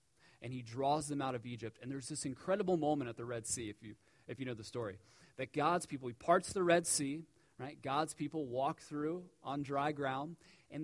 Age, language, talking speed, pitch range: 30-49, English, 220 wpm, 120-160 Hz